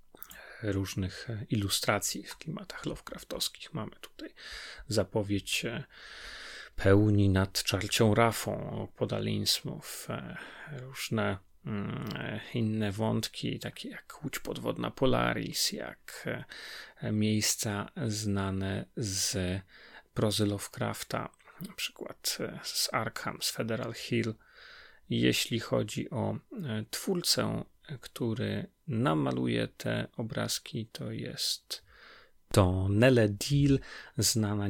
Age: 30-49